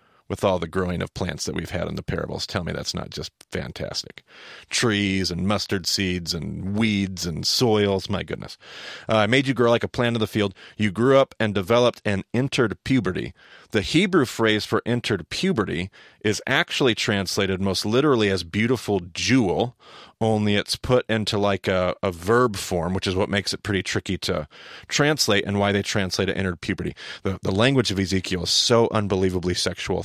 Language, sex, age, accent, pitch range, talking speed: English, male, 30-49, American, 95-115 Hz, 190 wpm